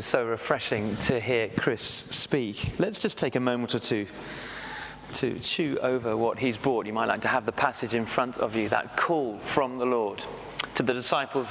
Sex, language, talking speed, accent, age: male, English, 200 wpm, British, 30-49